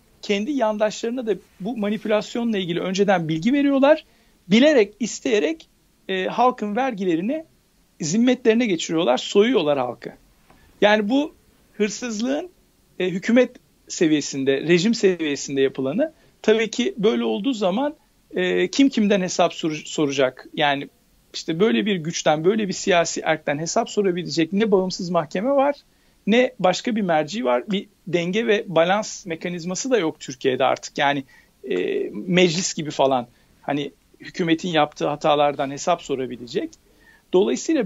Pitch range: 165-235 Hz